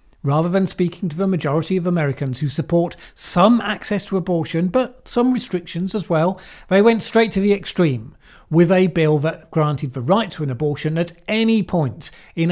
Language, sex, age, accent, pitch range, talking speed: English, male, 40-59, British, 145-195 Hz, 185 wpm